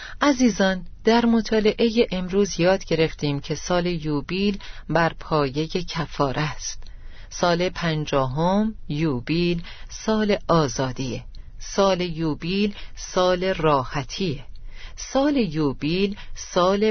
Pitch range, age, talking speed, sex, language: 150-190 Hz, 40-59, 90 wpm, female, Persian